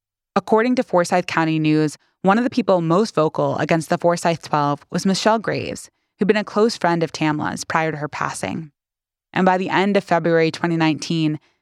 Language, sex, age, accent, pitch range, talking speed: English, female, 20-39, American, 155-195 Hz, 185 wpm